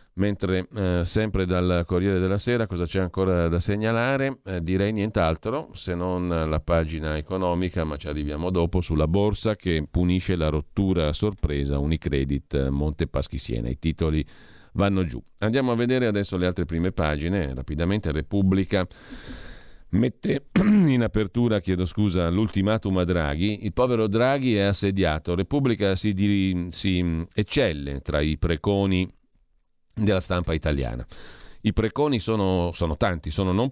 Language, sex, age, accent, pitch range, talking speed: Italian, male, 40-59, native, 85-105 Hz, 140 wpm